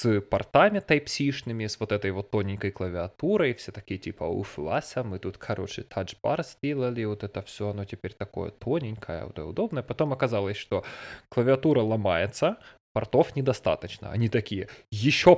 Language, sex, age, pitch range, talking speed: Russian, male, 20-39, 105-140 Hz, 145 wpm